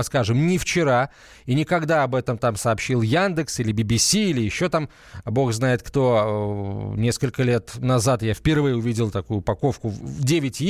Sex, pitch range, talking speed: male, 115-160 Hz, 150 wpm